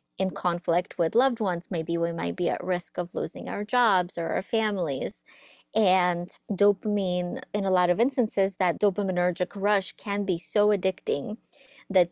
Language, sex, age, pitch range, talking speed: English, female, 30-49, 175-210 Hz, 165 wpm